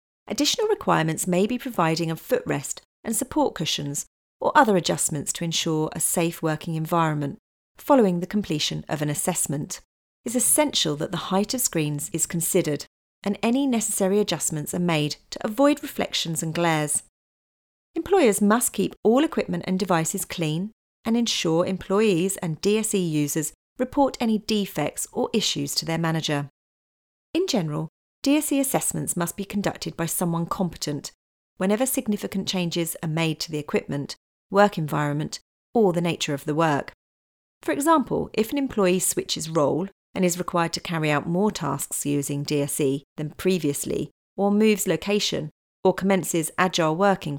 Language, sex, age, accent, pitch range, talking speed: English, female, 40-59, British, 155-210 Hz, 150 wpm